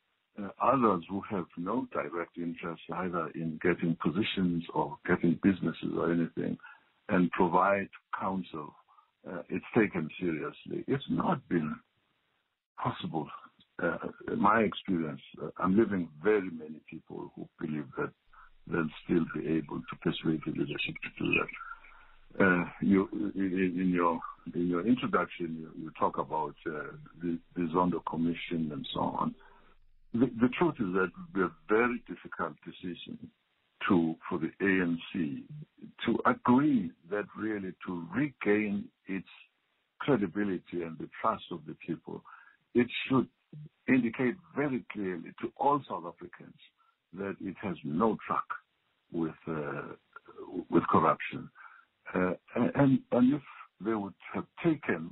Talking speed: 135 wpm